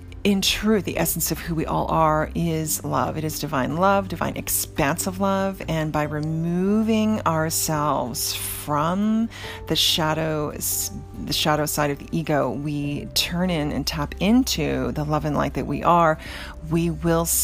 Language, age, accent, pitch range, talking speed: English, 40-59, American, 140-185 Hz, 160 wpm